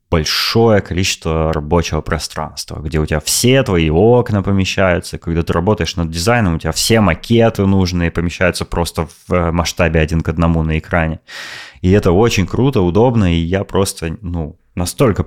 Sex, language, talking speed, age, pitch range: male, Russian, 155 wpm, 20-39, 85-105 Hz